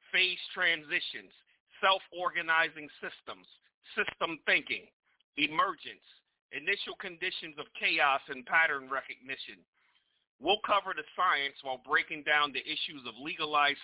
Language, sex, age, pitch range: English, male, 40-59, 140-180 Hz